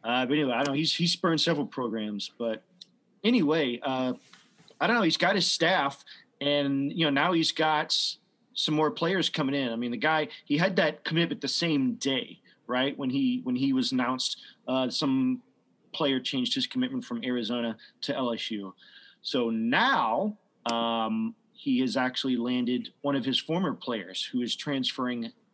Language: English